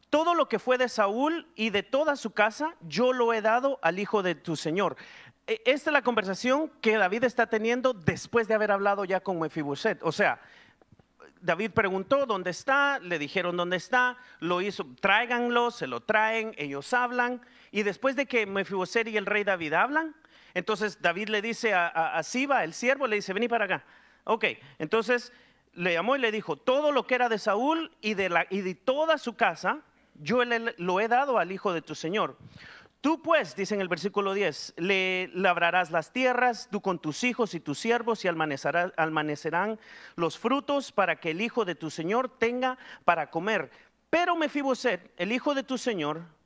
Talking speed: 190 wpm